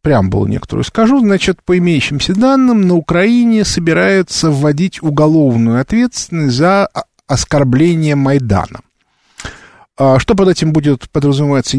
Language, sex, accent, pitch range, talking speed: Russian, male, native, 115-180 Hz, 110 wpm